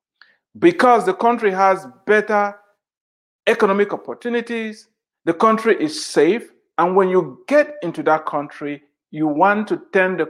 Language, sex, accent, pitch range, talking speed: English, male, Nigerian, 180-240 Hz, 135 wpm